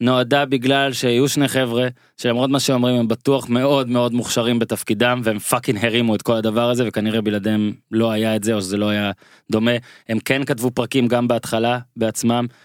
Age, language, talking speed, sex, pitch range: 20-39, Hebrew, 185 wpm, male, 120-150 Hz